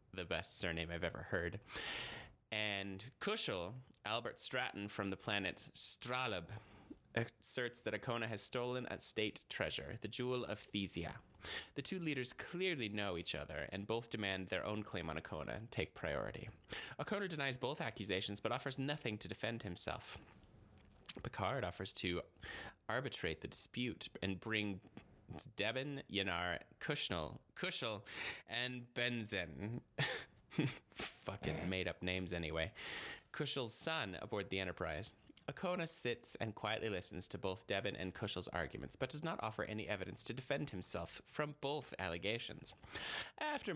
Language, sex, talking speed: English, male, 140 wpm